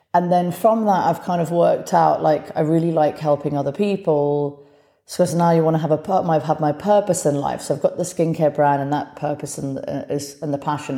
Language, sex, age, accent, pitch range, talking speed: English, female, 30-49, British, 145-160 Hz, 235 wpm